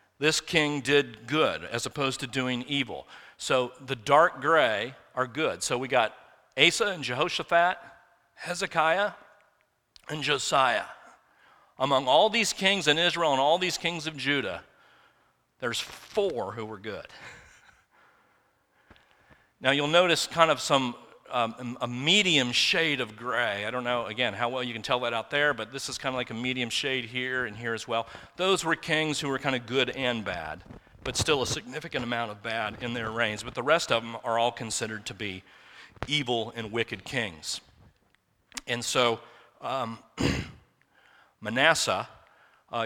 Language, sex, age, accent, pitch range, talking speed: English, male, 40-59, American, 120-150 Hz, 165 wpm